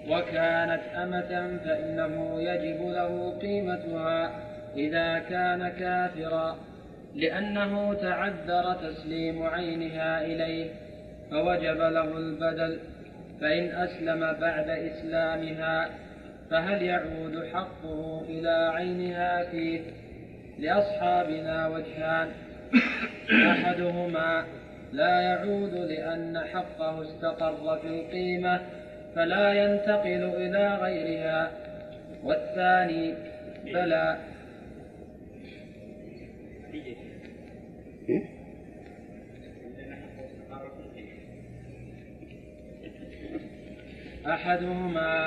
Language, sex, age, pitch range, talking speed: Arabic, male, 30-49, 160-180 Hz, 60 wpm